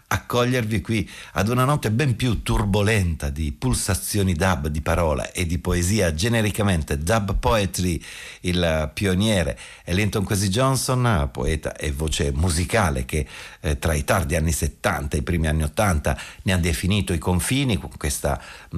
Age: 50-69